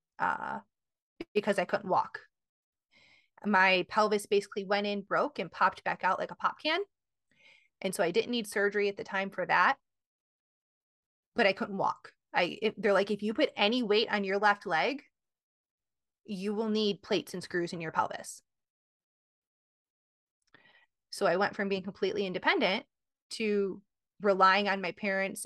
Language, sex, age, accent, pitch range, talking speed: English, female, 20-39, American, 180-215 Hz, 160 wpm